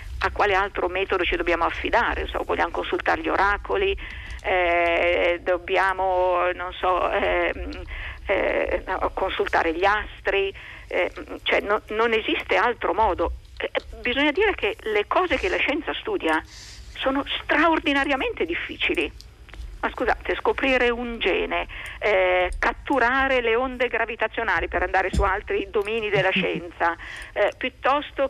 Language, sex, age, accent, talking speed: Italian, female, 50-69, native, 125 wpm